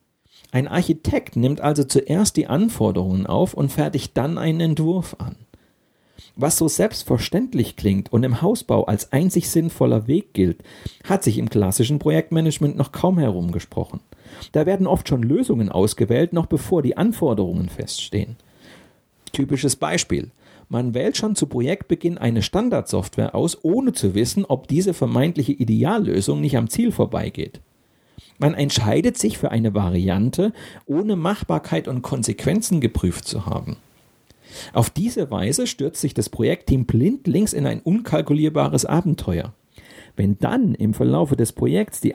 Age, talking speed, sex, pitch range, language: 40-59, 140 wpm, male, 115-175 Hz, German